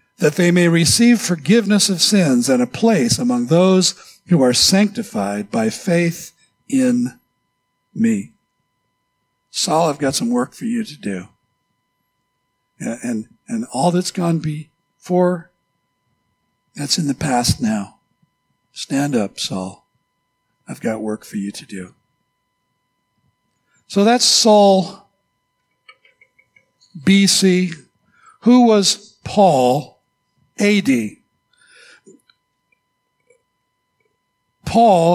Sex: male